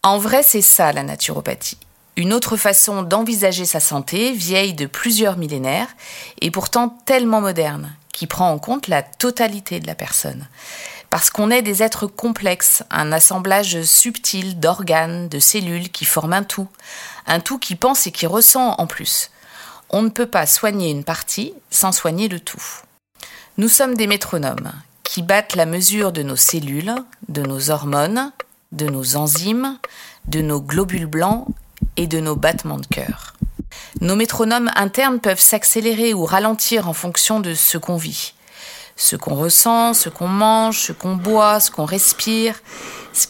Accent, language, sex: French, French, female